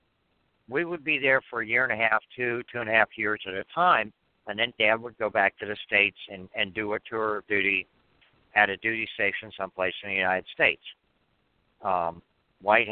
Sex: male